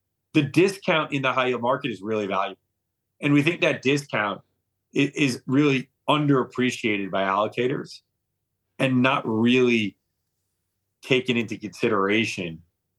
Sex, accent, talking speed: male, American, 120 wpm